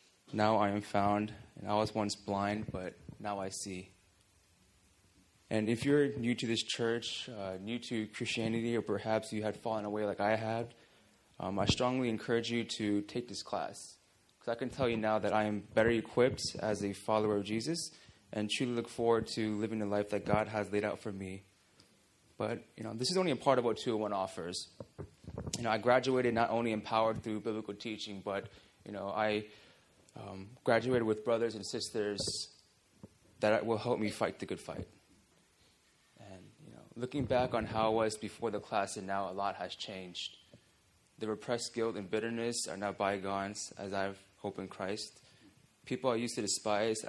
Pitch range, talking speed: 100-115 Hz, 190 wpm